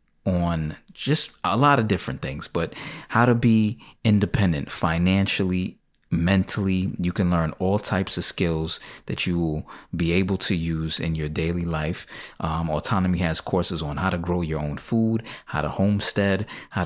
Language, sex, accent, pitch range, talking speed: English, male, American, 85-100 Hz, 165 wpm